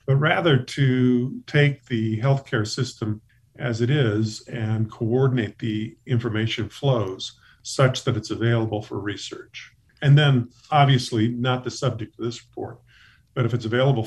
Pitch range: 110-130 Hz